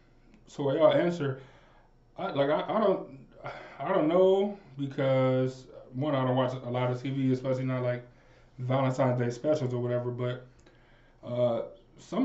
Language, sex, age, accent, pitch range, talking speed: English, male, 20-39, American, 125-145 Hz, 155 wpm